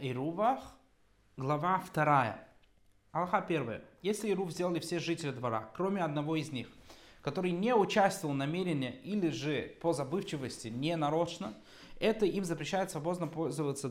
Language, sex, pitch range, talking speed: Russian, male, 140-195 Hz, 130 wpm